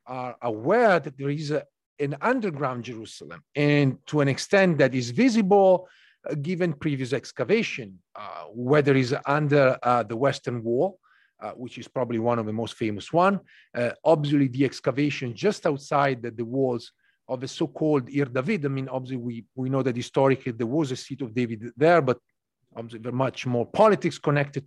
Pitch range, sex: 125-180 Hz, male